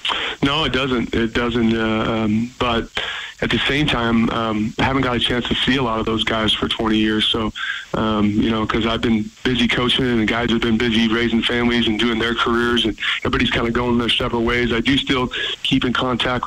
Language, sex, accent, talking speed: English, male, American, 225 wpm